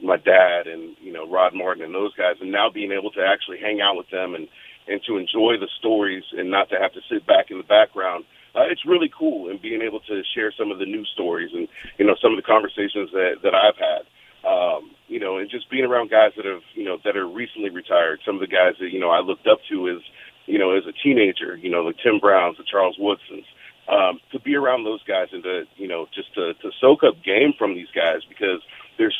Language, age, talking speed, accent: English, 40-59, 255 wpm, American